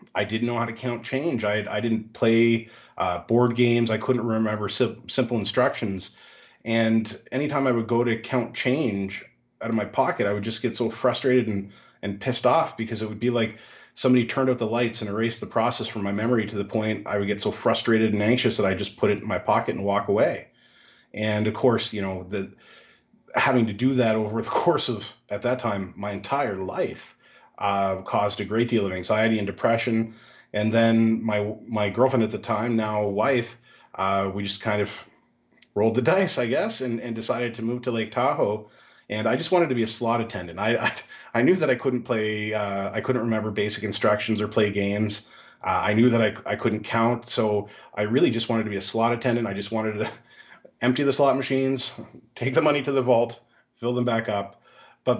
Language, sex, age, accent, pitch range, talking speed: English, male, 30-49, American, 105-120 Hz, 215 wpm